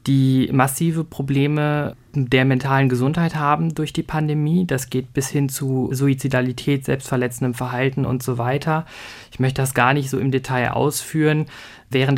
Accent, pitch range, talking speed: German, 130-145 Hz, 155 wpm